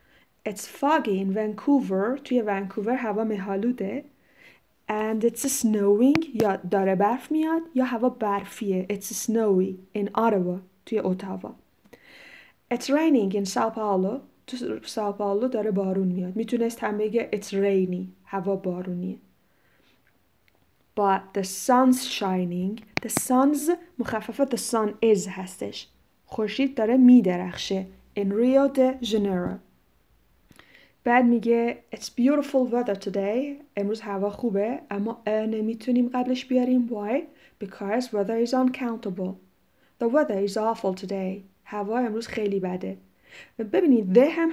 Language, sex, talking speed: Persian, female, 120 wpm